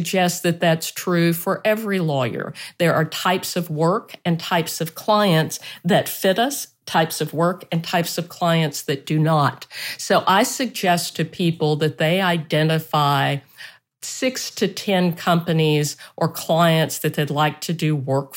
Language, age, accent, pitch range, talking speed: English, 50-69, American, 160-195 Hz, 160 wpm